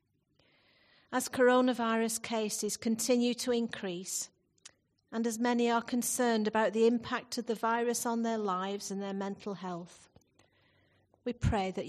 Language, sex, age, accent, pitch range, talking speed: English, female, 40-59, British, 190-230 Hz, 135 wpm